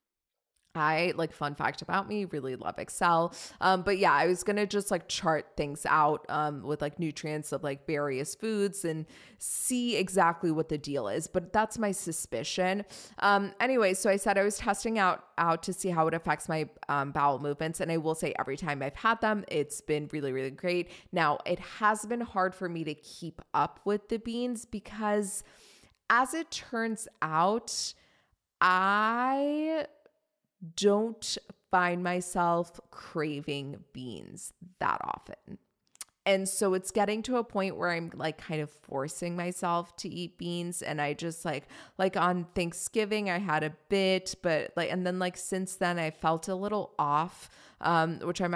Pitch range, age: 155-200 Hz, 20-39